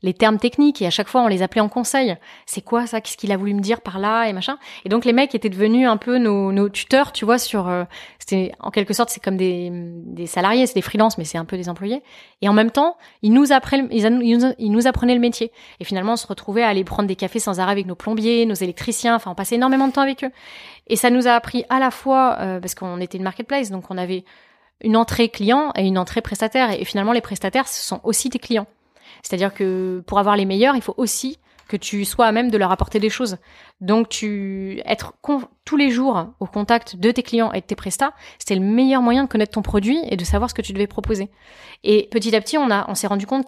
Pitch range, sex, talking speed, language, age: 195-245 Hz, female, 260 wpm, French, 30-49